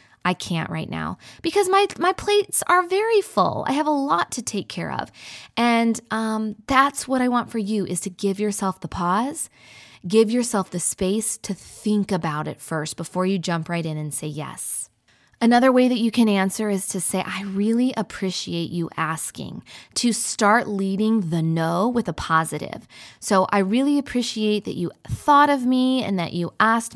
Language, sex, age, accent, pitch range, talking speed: English, female, 20-39, American, 170-235 Hz, 190 wpm